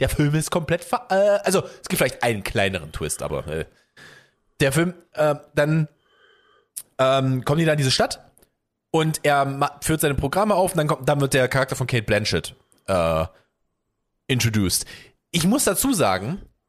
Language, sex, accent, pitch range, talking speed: German, male, German, 105-155 Hz, 170 wpm